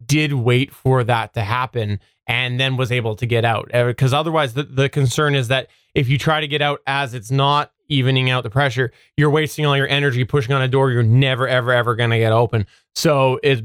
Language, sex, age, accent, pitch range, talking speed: English, male, 20-39, American, 120-150 Hz, 230 wpm